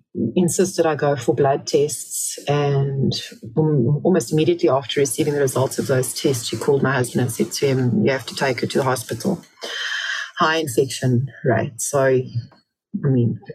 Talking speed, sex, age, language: 170 wpm, female, 30-49, English